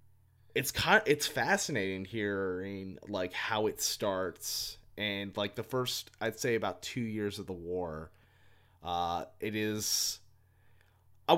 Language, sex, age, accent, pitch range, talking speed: English, male, 30-49, American, 95-115 Hz, 135 wpm